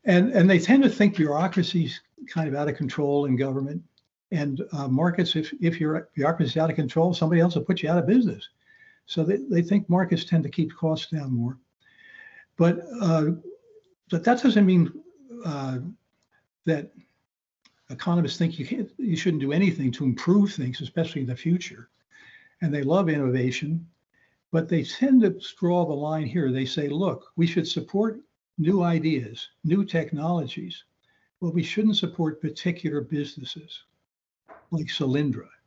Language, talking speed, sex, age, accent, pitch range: English, 165 wpm, male, 60-79, American, 145-190 Hz